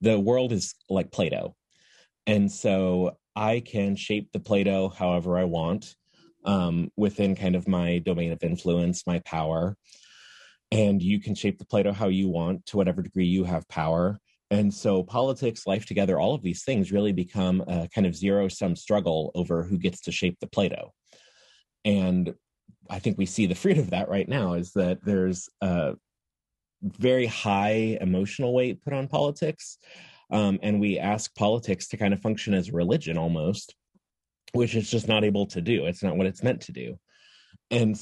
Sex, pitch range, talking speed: male, 90-105 Hz, 180 wpm